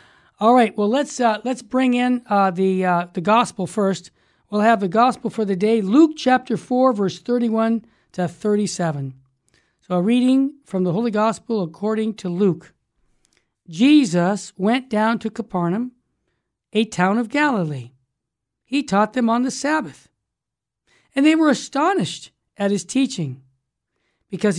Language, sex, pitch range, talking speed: English, male, 170-230 Hz, 155 wpm